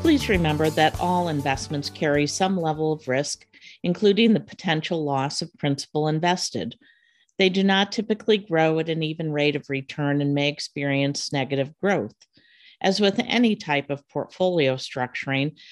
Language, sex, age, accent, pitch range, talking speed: English, female, 50-69, American, 140-180 Hz, 155 wpm